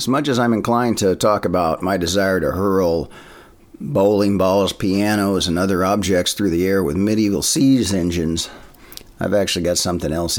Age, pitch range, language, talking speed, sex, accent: 50-69, 95-120 Hz, English, 175 wpm, male, American